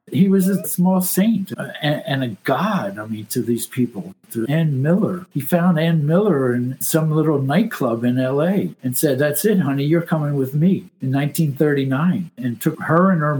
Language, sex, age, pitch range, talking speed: English, male, 60-79, 130-175 Hz, 190 wpm